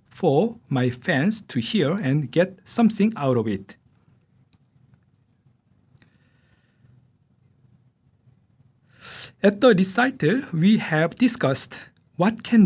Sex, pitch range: male, 125-195 Hz